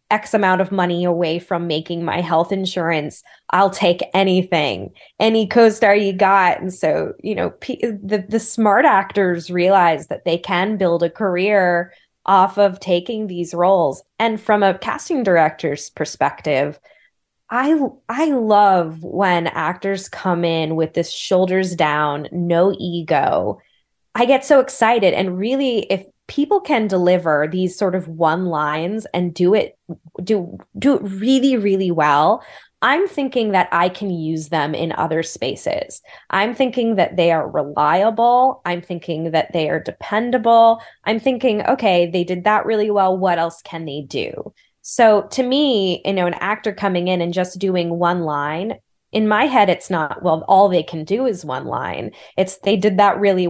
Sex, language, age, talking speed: female, English, 20-39, 165 wpm